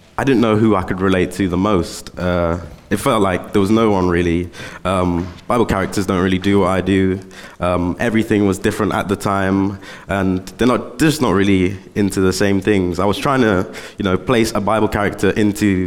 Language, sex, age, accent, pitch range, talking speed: English, male, 20-39, British, 90-105 Hz, 215 wpm